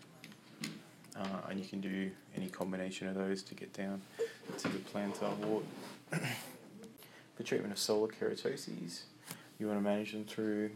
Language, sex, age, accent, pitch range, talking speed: English, male, 20-39, Australian, 100-115 Hz, 150 wpm